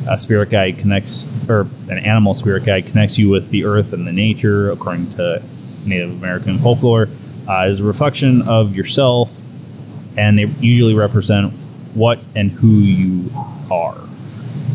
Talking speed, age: 150 wpm, 20-39